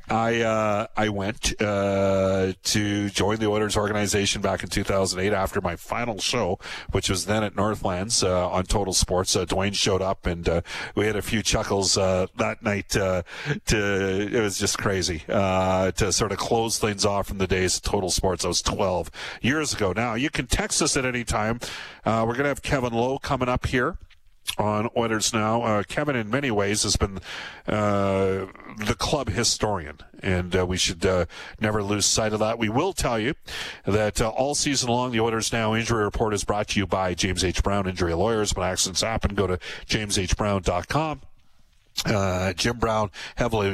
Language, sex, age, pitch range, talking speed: English, male, 50-69, 95-115 Hz, 190 wpm